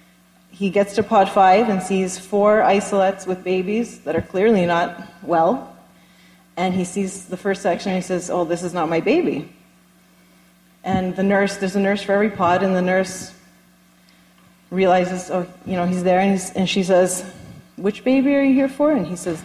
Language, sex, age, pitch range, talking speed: English, female, 30-49, 170-200 Hz, 195 wpm